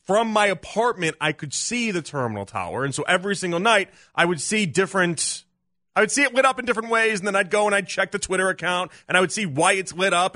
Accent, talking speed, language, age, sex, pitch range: American, 260 wpm, English, 30-49, male, 140-200 Hz